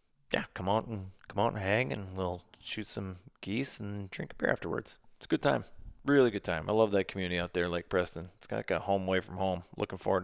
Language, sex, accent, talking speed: English, male, American, 250 wpm